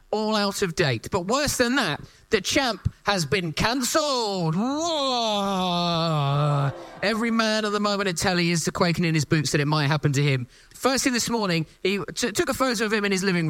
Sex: male